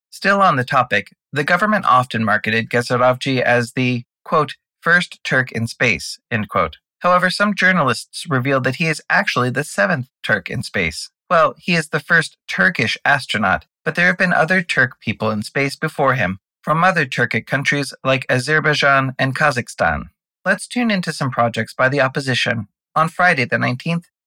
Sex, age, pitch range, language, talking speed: male, 30-49, 120-160 Hz, English, 170 wpm